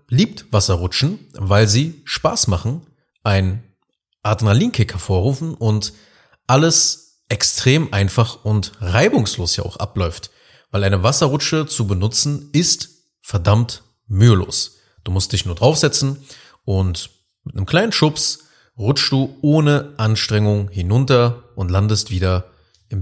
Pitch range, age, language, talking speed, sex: 100-135 Hz, 30-49, German, 115 wpm, male